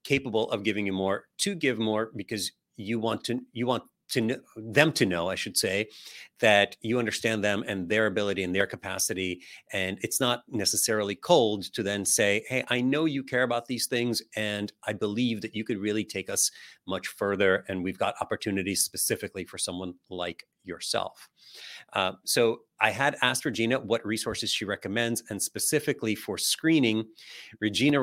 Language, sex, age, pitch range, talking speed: English, male, 40-59, 100-120 Hz, 175 wpm